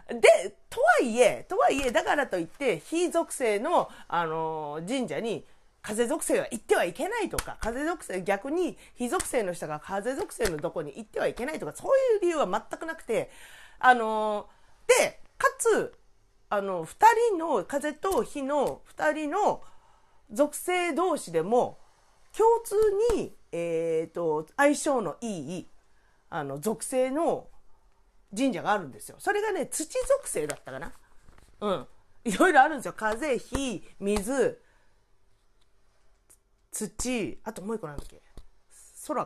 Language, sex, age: Japanese, female, 40-59